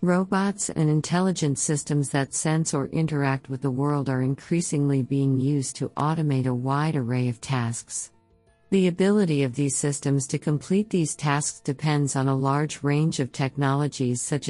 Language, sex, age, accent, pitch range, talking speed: English, female, 50-69, American, 130-155 Hz, 160 wpm